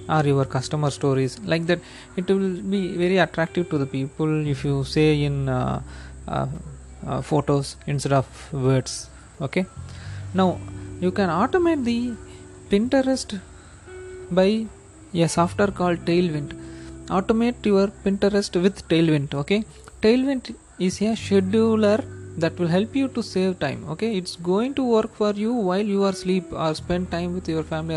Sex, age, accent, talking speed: male, 20-39, native, 150 wpm